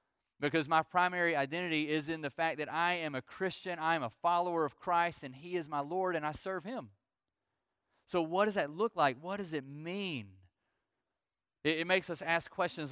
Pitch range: 140-170 Hz